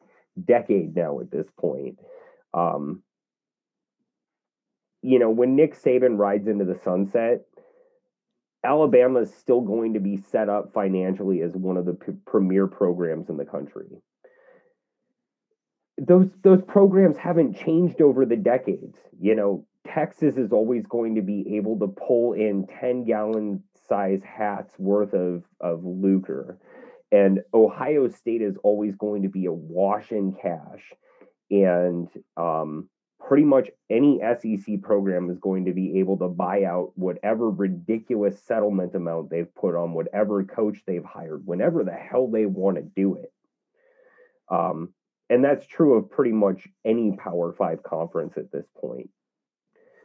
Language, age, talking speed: English, 30-49, 145 wpm